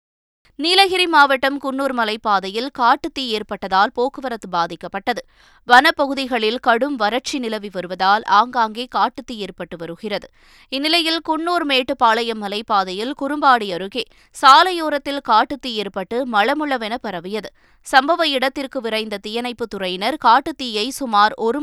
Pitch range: 205-270 Hz